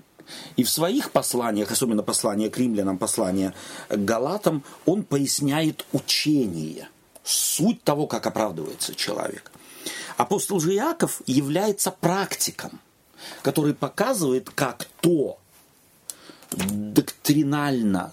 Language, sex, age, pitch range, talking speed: Russian, male, 40-59, 110-155 Hz, 95 wpm